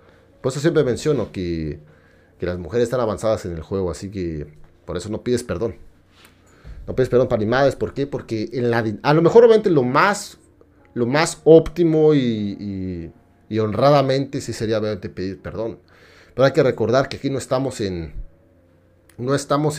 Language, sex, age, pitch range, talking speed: Spanish, male, 40-59, 85-130 Hz, 180 wpm